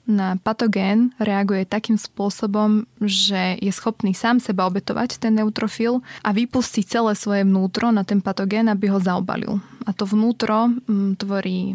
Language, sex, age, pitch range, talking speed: Slovak, female, 20-39, 195-215 Hz, 145 wpm